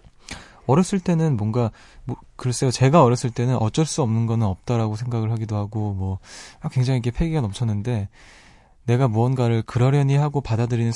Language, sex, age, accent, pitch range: Korean, male, 20-39, native, 105-135 Hz